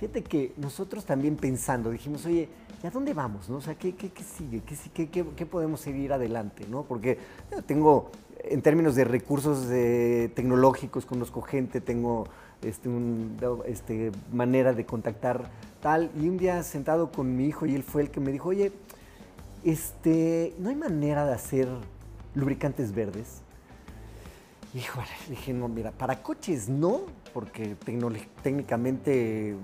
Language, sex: Spanish, male